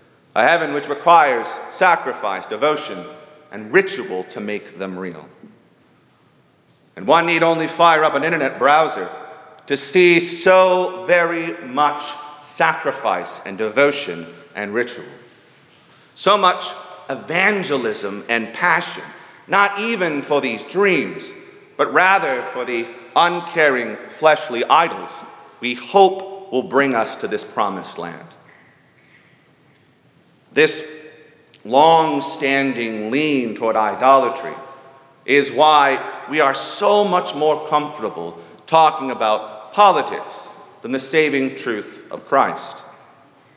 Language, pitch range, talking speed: English, 125-165 Hz, 110 wpm